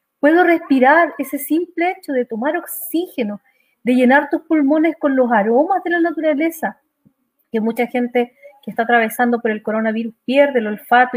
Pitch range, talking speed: 225-280 Hz, 160 wpm